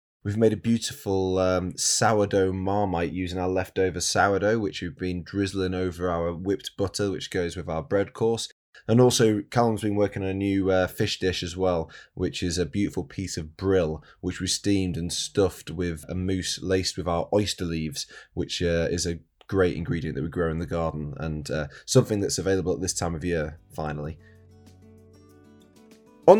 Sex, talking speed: male, 185 wpm